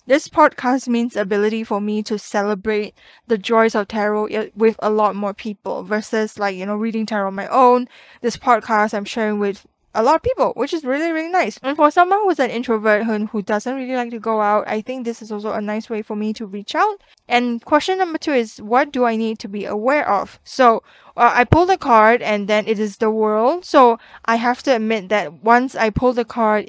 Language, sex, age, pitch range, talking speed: English, female, 10-29, 210-255 Hz, 230 wpm